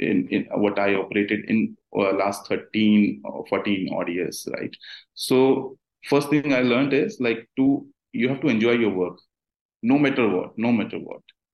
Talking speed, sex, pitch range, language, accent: 170 wpm, male, 105-120 Hz, Hindi, native